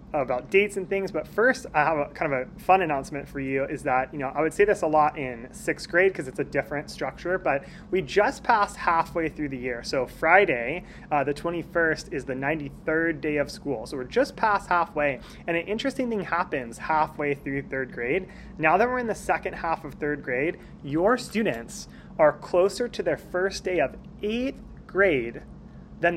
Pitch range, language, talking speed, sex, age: 145-190 Hz, English, 205 wpm, male, 30-49